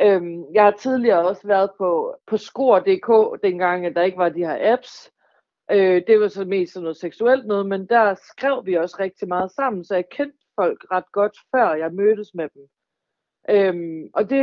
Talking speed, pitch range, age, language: 185 wpm, 185-250 Hz, 40-59, Danish